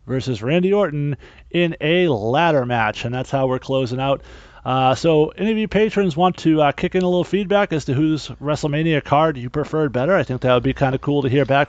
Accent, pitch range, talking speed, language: American, 130-160 Hz, 235 wpm, English